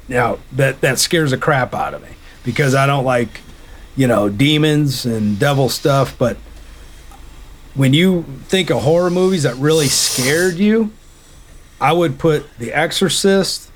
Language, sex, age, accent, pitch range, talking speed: English, male, 40-59, American, 100-150 Hz, 155 wpm